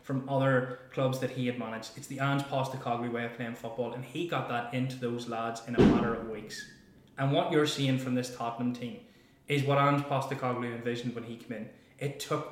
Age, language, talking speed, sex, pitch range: 10-29, English, 220 wpm, male, 120-145 Hz